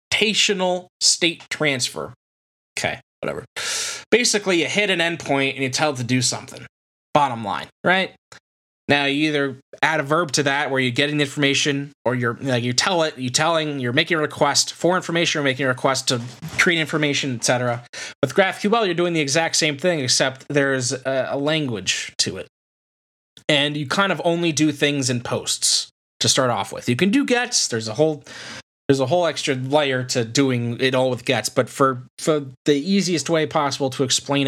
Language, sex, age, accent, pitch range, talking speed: English, male, 20-39, American, 125-155 Hz, 195 wpm